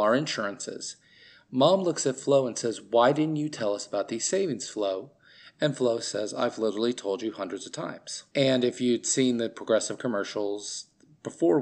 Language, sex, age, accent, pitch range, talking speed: English, male, 30-49, American, 115-165 Hz, 180 wpm